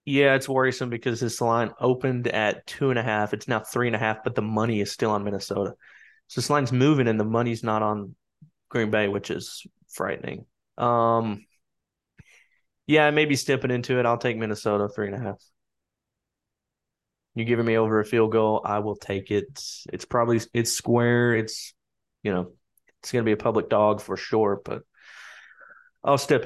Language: English